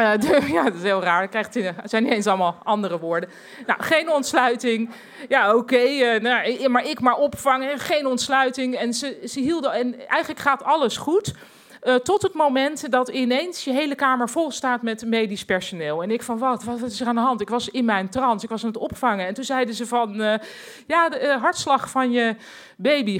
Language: Dutch